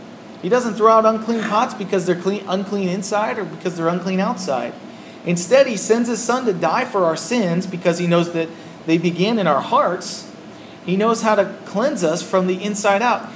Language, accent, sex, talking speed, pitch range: English, American, male, 200 wpm, 175-220 Hz